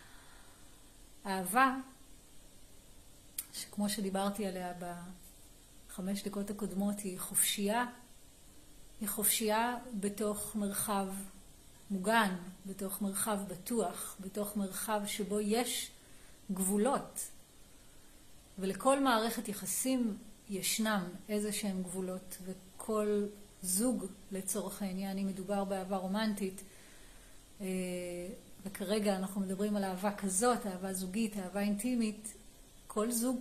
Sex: female